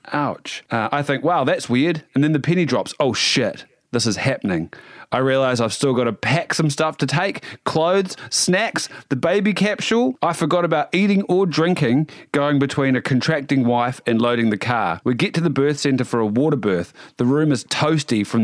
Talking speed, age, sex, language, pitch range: 205 wpm, 30-49, male, English, 125-170 Hz